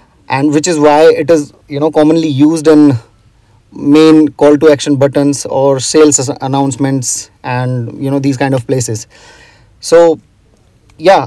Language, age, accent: English, 30-49, Indian